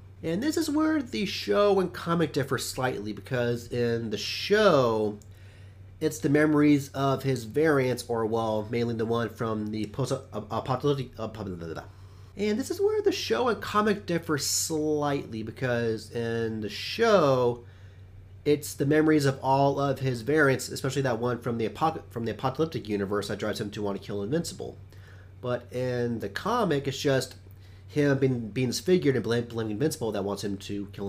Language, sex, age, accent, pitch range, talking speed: English, male, 30-49, American, 110-145 Hz, 165 wpm